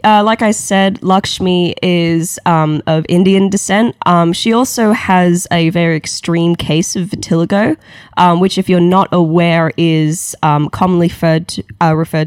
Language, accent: English, Australian